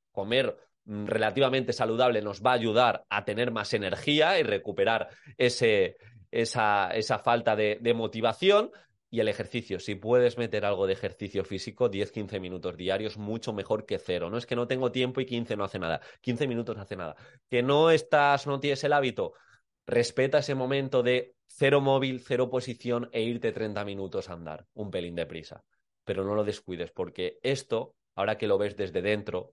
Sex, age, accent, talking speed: male, 20-39, Spanish, 185 wpm